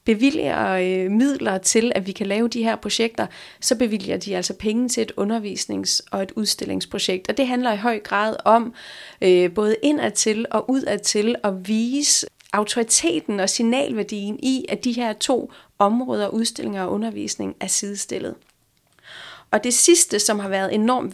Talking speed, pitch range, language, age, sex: 155 wpm, 195-235 Hz, Danish, 30-49, female